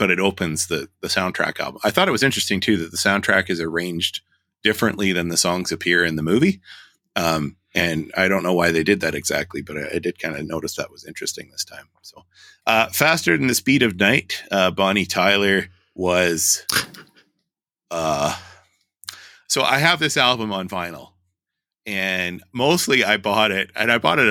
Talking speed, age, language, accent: 190 wpm, 30-49, English, American